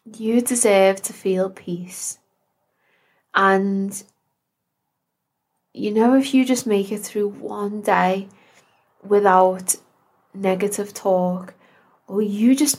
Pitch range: 195-225 Hz